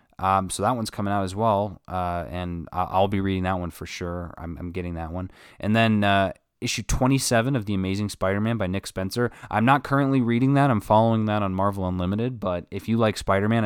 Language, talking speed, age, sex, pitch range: English, 220 wpm, 20-39, male, 90-115 Hz